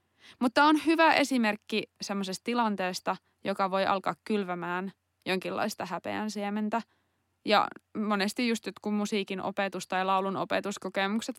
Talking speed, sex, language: 115 wpm, female, Finnish